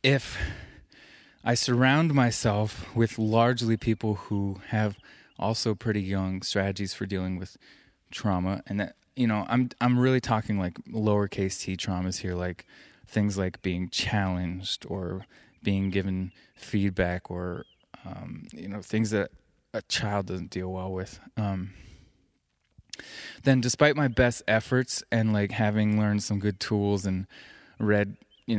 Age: 20-39